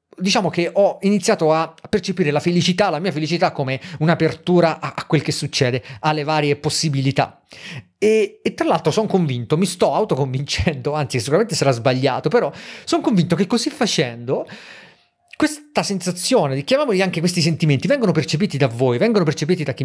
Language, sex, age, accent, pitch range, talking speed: Italian, male, 40-59, native, 140-175 Hz, 160 wpm